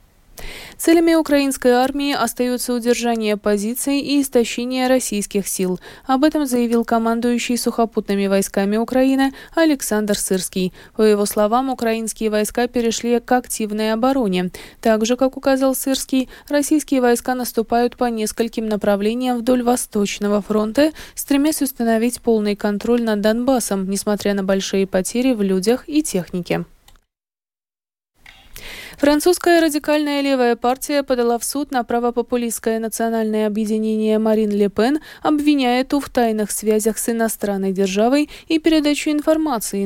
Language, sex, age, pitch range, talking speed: Russian, female, 20-39, 210-270 Hz, 120 wpm